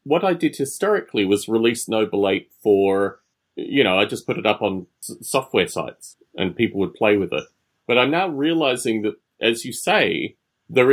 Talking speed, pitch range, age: 185 wpm, 105-140 Hz, 30-49